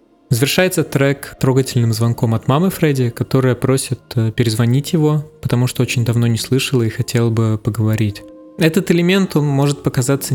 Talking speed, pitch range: 145 wpm, 120-150 Hz